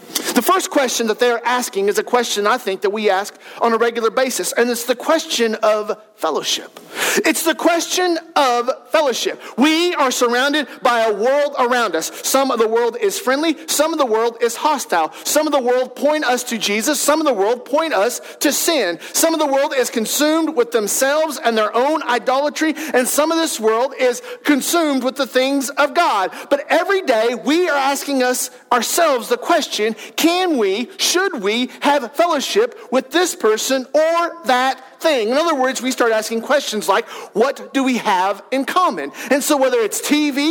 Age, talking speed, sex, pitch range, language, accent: 40-59, 195 wpm, male, 240-325 Hz, English, American